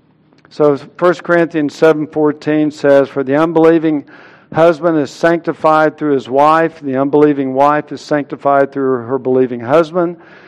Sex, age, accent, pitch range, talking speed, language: male, 60-79, American, 145-190 Hz, 130 wpm, English